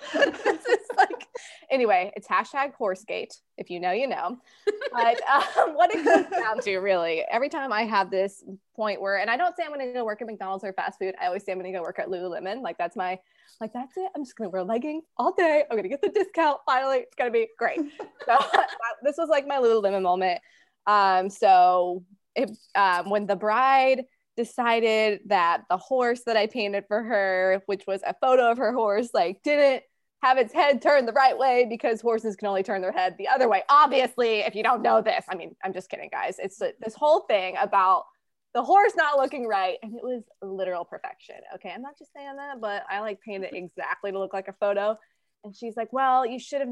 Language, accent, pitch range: English, American, 195-275 Hz